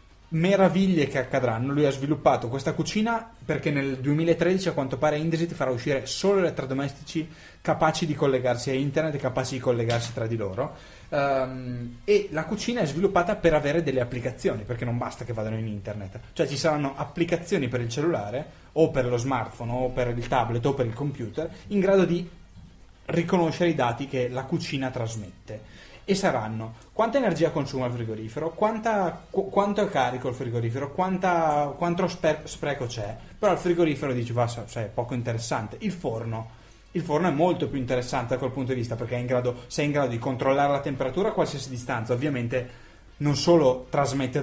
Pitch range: 120-160 Hz